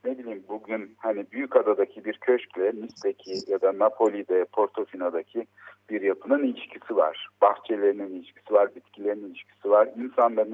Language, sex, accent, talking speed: Turkish, male, native, 130 wpm